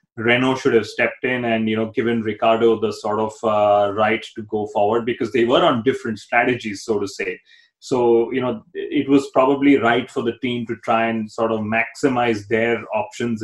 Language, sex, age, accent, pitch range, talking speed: English, male, 30-49, Indian, 110-135 Hz, 200 wpm